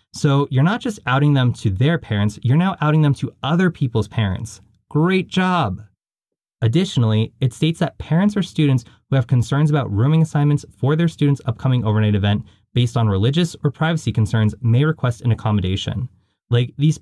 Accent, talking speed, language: American, 175 wpm, English